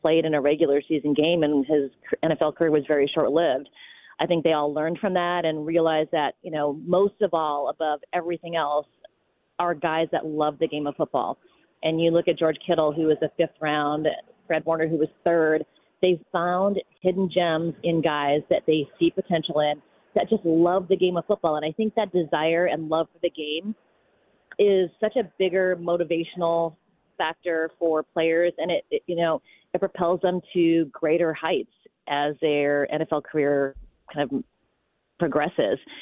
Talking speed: 185 wpm